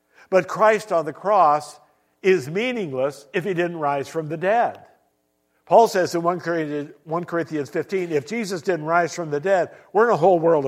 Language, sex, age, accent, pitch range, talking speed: English, male, 60-79, American, 145-195 Hz, 180 wpm